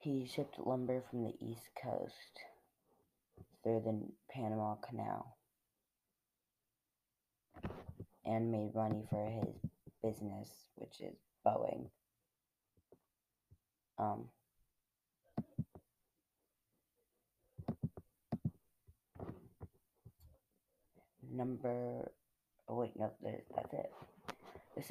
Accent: American